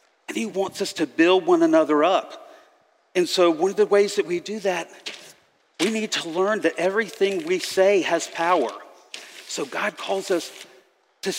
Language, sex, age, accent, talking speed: English, male, 50-69, American, 180 wpm